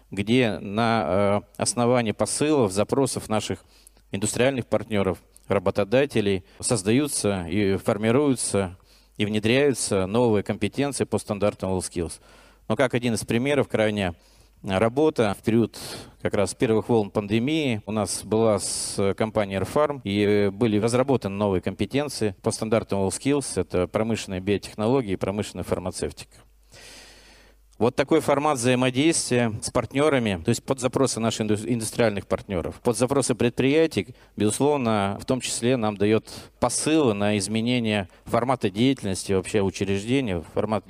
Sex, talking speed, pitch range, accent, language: male, 120 wpm, 100-125 Hz, native, Russian